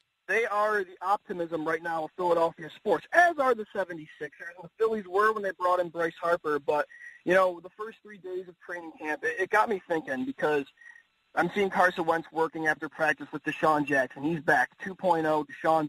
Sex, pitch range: male, 155-200 Hz